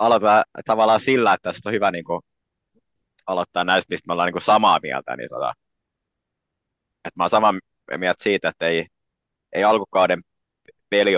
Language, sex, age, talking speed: Finnish, male, 30-49, 130 wpm